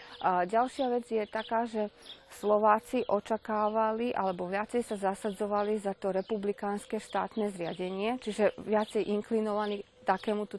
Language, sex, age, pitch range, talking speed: Slovak, female, 30-49, 185-220 Hz, 115 wpm